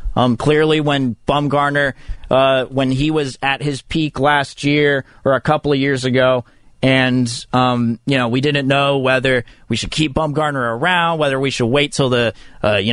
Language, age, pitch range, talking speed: English, 30-49, 130-160 Hz, 185 wpm